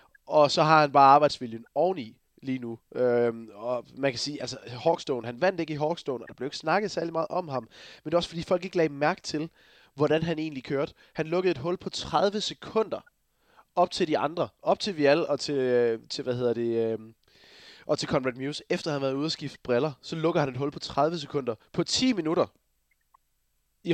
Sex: male